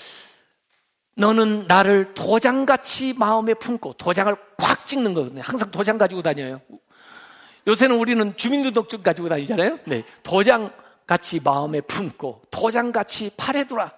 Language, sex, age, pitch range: Korean, male, 50-69, 210-325 Hz